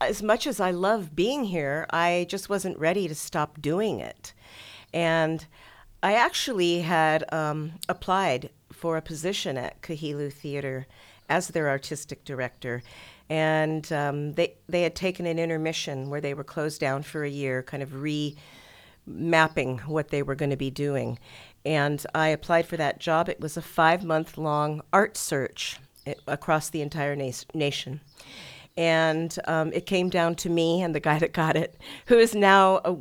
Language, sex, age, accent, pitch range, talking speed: English, female, 50-69, American, 145-180 Hz, 165 wpm